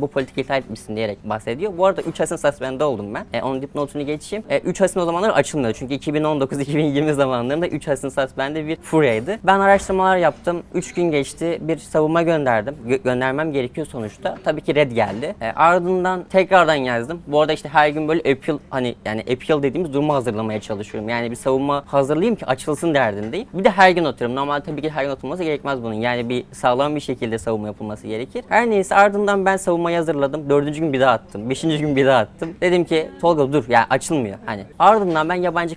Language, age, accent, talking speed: Turkish, 20-39, native, 205 wpm